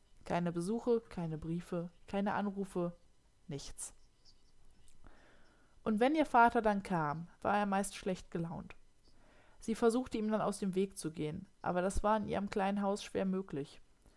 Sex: female